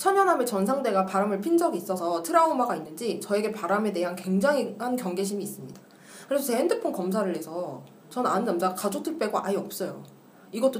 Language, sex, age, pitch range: Korean, female, 20-39, 185-265 Hz